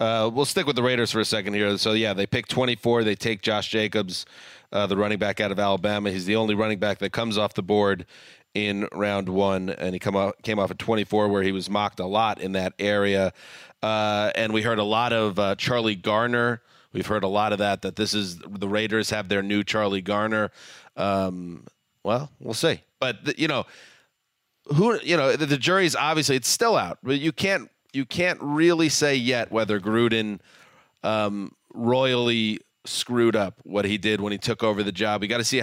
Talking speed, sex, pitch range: 215 wpm, male, 105-120 Hz